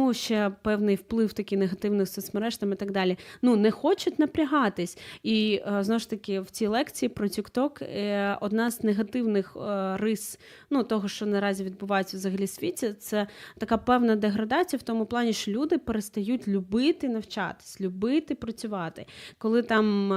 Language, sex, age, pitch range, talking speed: Ukrainian, female, 20-39, 200-240 Hz, 150 wpm